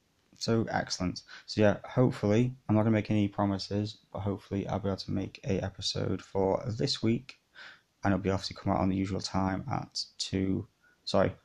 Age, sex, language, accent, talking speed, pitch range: 20-39, male, English, British, 190 wpm, 95-105 Hz